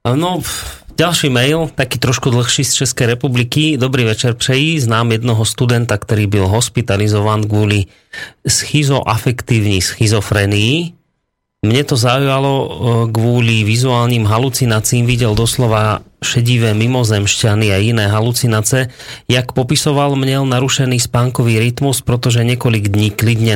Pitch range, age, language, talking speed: 105-125 Hz, 30-49, Slovak, 110 wpm